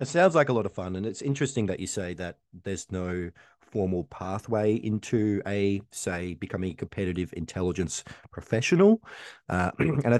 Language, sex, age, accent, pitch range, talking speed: English, male, 30-49, Australian, 95-120 Hz, 170 wpm